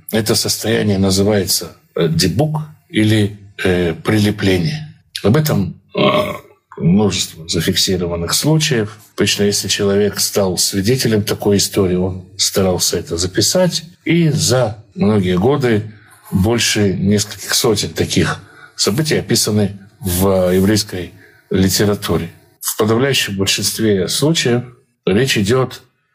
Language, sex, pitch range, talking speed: Russian, male, 100-130 Hz, 95 wpm